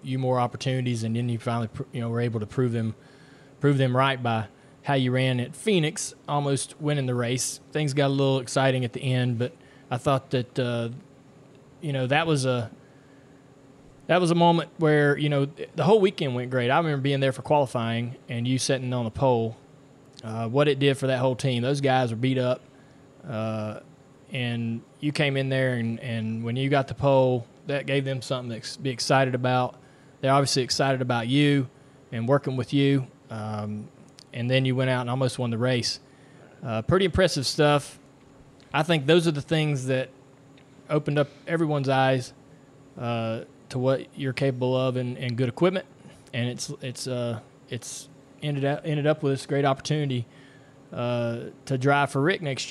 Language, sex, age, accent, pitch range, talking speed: English, male, 20-39, American, 125-140 Hz, 190 wpm